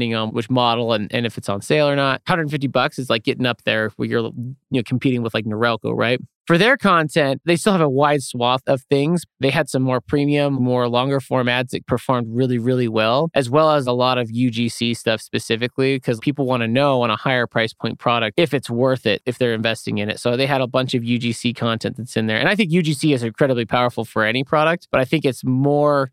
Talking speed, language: 245 wpm, English